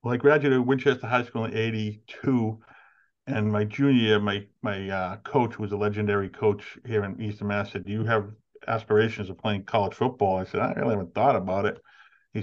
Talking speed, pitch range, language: 210 wpm, 100-110 Hz, English